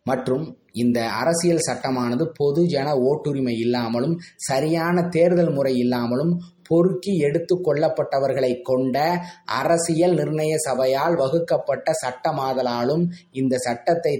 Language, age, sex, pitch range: Tamil, 20-39, male, 130-170 Hz